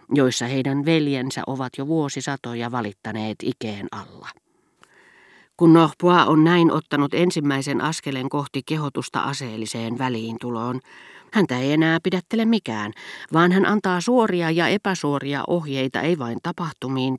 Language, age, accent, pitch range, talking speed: Finnish, 40-59, native, 125-175 Hz, 120 wpm